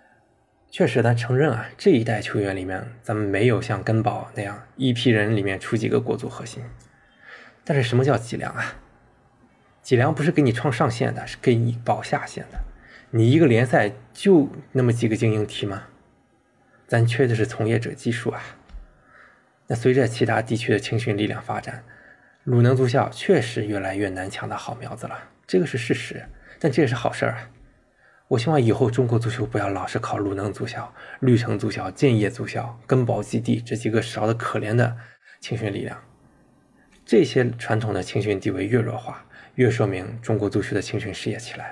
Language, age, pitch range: Chinese, 20-39, 105-130 Hz